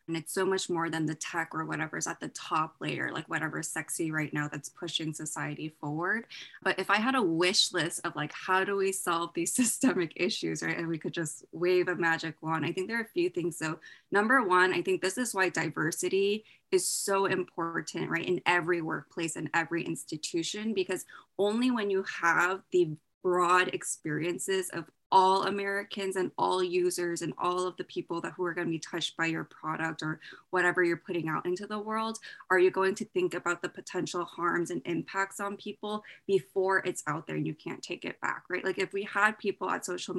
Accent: American